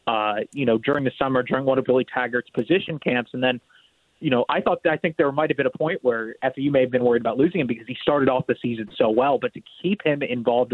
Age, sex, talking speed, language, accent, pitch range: 30-49, male, 280 wpm, English, American, 120-140 Hz